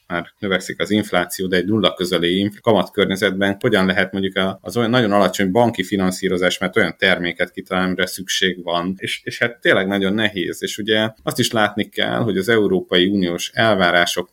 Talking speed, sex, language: 180 wpm, male, Hungarian